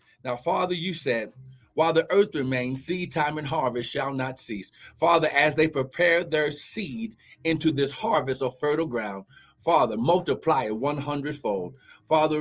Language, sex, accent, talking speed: English, male, American, 160 wpm